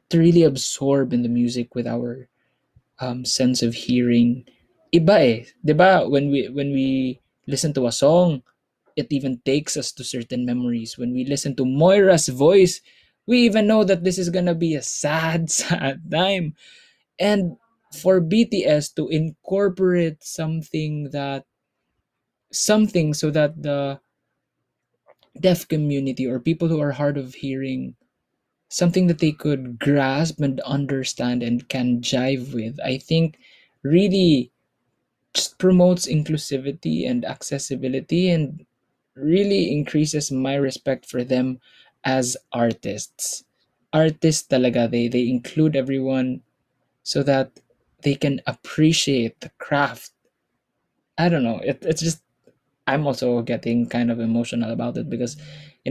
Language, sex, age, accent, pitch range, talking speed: Filipino, male, 20-39, native, 125-160 Hz, 130 wpm